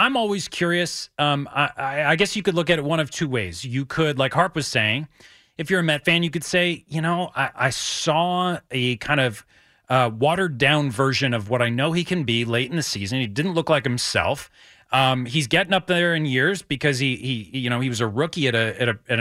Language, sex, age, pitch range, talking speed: English, male, 30-49, 135-190 Hz, 245 wpm